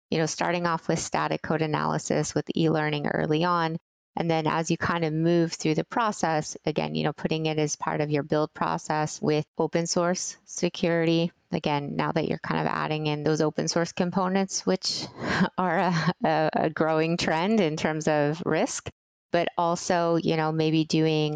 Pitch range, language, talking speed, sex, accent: 155-175 Hz, English, 185 wpm, female, American